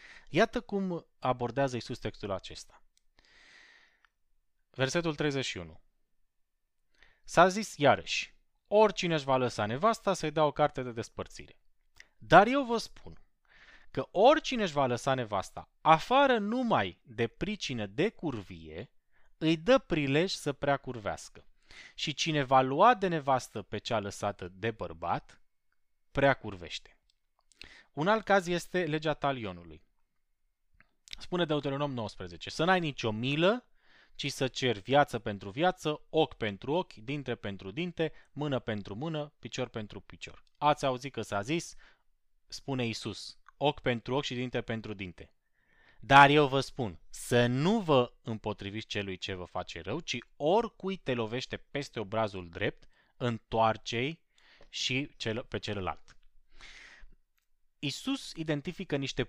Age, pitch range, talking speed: 20-39, 110-160 Hz, 130 wpm